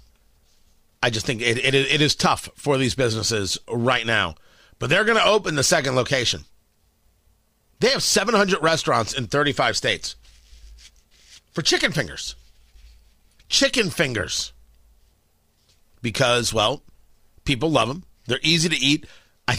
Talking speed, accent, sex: 130 wpm, American, male